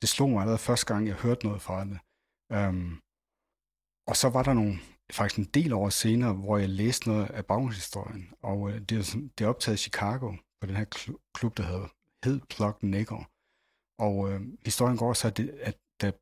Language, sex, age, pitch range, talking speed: Danish, male, 60-79, 100-120 Hz, 190 wpm